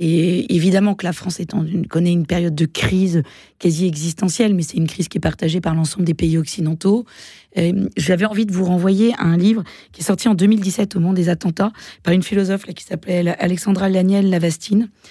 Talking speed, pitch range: 205 wpm, 175-210 Hz